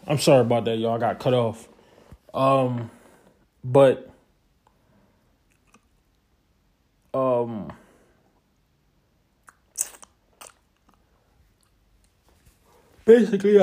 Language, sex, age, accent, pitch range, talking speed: English, male, 20-39, American, 125-195 Hz, 55 wpm